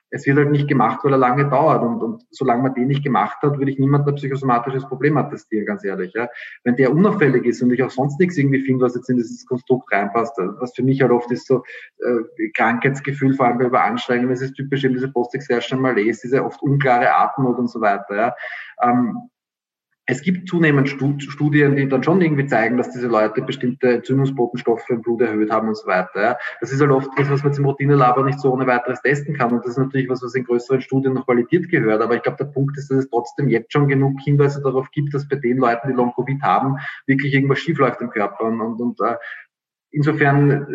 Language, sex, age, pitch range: German, male, 20-39, 125-140 Hz